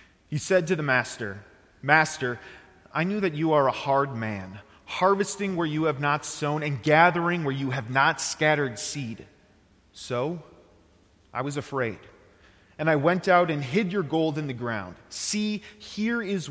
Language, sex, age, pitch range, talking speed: English, male, 30-49, 100-155 Hz, 165 wpm